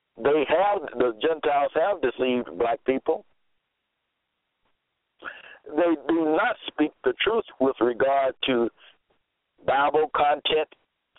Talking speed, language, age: 100 wpm, English, 60-79